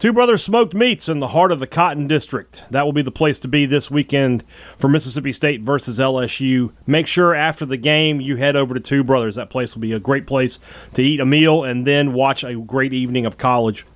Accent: American